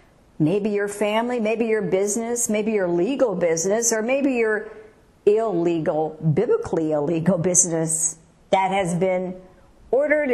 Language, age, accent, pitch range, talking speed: English, 50-69, American, 175-235 Hz, 120 wpm